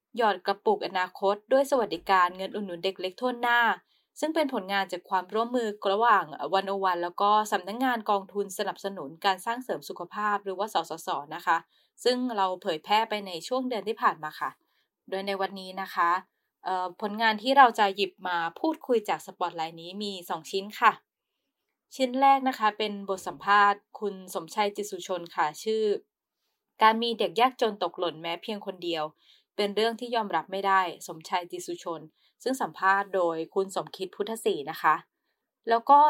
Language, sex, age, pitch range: Thai, female, 20-39, 180-230 Hz